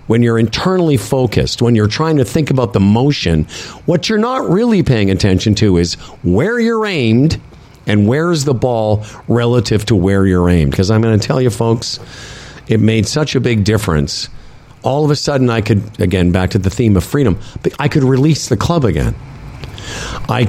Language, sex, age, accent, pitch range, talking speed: English, male, 50-69, American, 105-145 Hz, 190 wpm